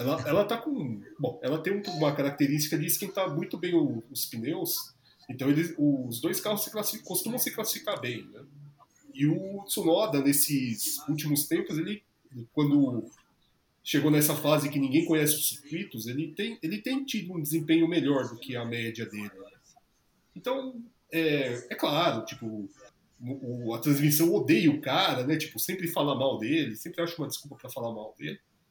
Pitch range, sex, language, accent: 135-220 Hz, male, Portuguese, Brazilian